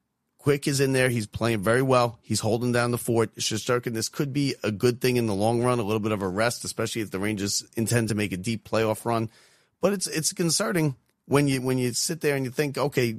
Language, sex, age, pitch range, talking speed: English, male, 40-59, 115-140 Hz, 250 wpm